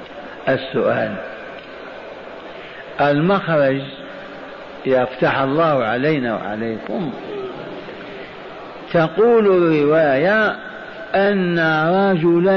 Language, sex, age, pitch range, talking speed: Arabic, male, 60-79, 145-195 Hz, 50 wpm